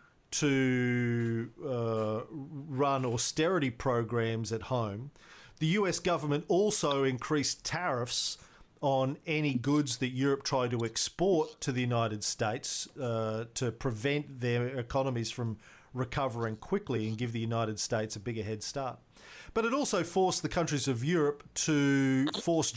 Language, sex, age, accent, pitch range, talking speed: English, male, 40-59, Australian, 115-155 Hz, 135 wpm